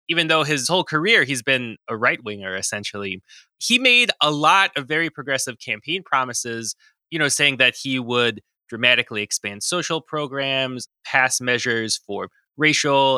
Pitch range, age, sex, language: 115-150 Hz, 20-39, male, English